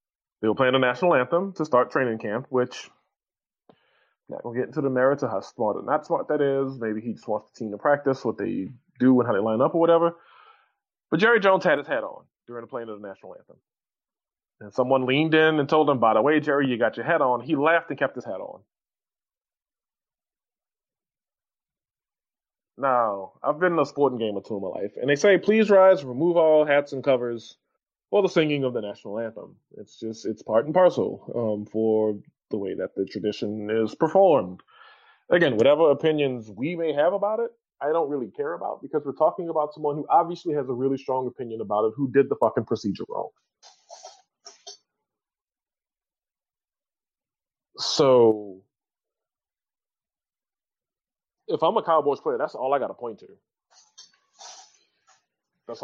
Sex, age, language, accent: male, 20-39, English, American